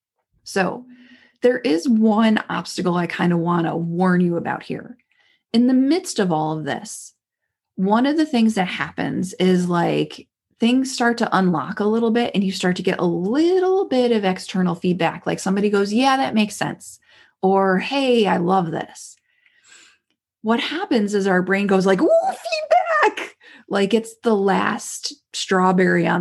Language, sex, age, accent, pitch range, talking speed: English, female, 30-49, American, 185-255 Hz, 165 wpm